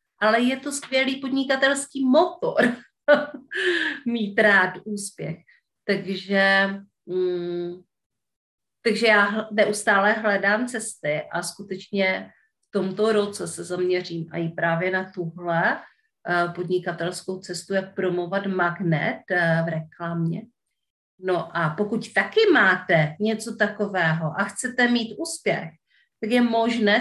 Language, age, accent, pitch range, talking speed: Czech, 40-59, native, 180-245 Hz, 100 wpm